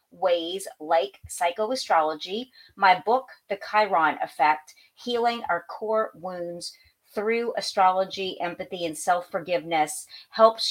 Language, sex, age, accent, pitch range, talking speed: English, female, 40-59, American, 175-220 Hz, 100 wpm